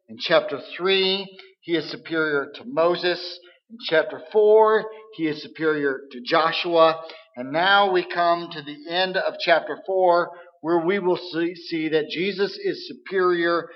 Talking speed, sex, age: 155 wpm, male, 50-69